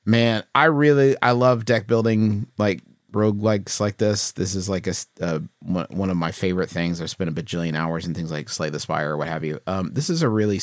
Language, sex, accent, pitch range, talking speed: English, male, American, 85-110 Hz, 230 wpm